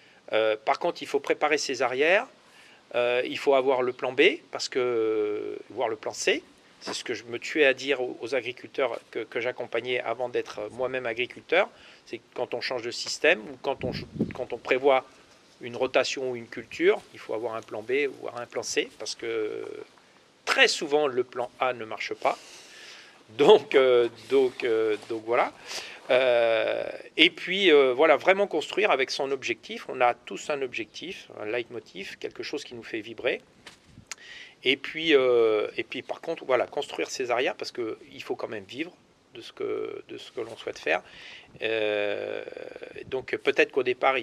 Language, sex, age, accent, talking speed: French, male, 40-59, French, 185 wpm